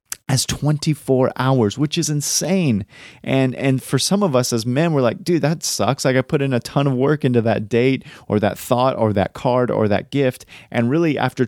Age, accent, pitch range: 30-49, American, 105-130 Hz